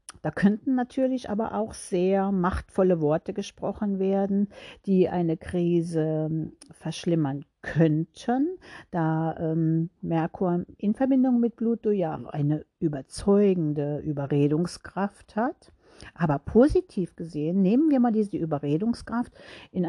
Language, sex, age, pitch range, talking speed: German, female, 50-69, 160-220 Hz, 110 wpm